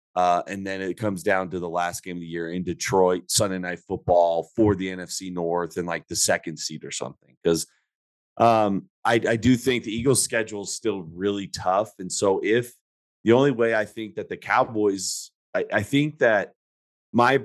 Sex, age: male, 30-49